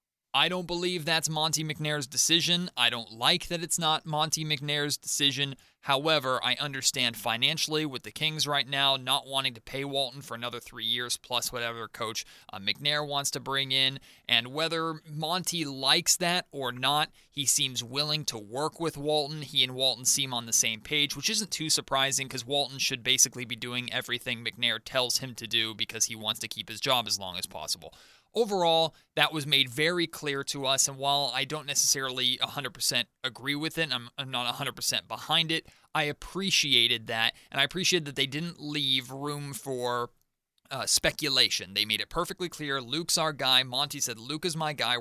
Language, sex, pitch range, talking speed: English, male, 125-155 Hz, 190 wpm